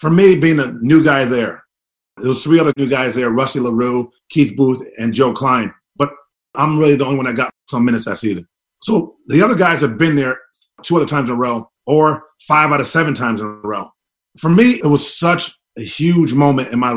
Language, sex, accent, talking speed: English, male, American, 230 wpm